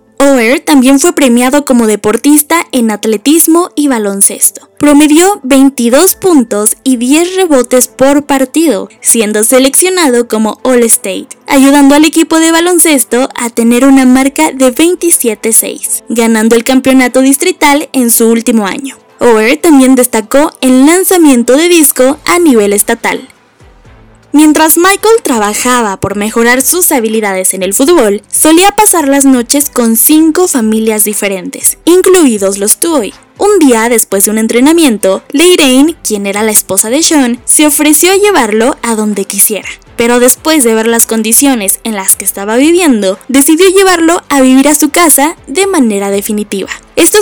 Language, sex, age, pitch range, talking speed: Spanish, female, 10-29, 225-310 Hz, 145 wpm